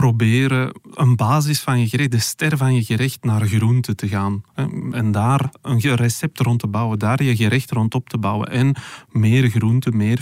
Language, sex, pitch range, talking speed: Dutch, male, 110-125 Hz, 195 wpm